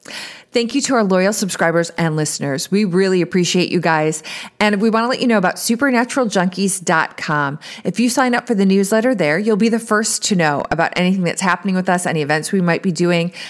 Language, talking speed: English, 215 wpm